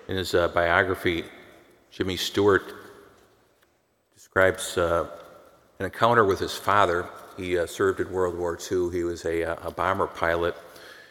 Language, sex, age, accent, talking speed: English, male, 50-69, American, 140 wpm